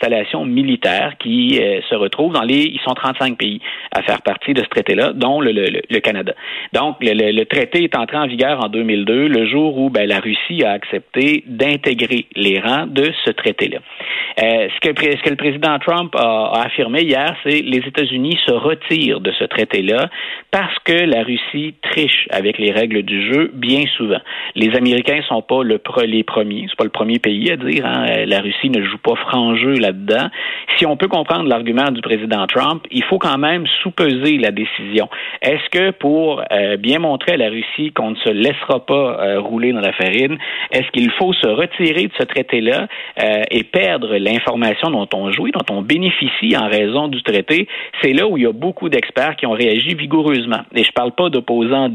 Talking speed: 205 wpm